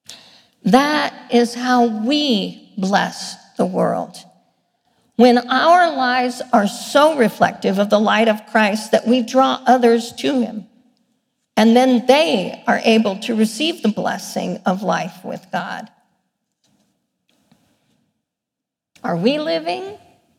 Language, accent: English, American